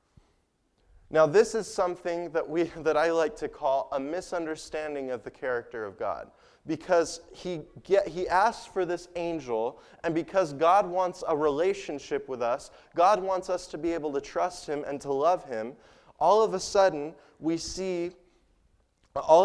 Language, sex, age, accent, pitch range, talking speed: English, male, 20-39, American, 150-185 Hz, 165 wpm